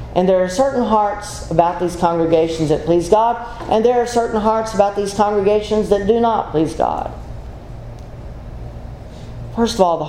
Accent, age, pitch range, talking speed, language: American, 40-59, 145-220 Hz, 165 wpm, English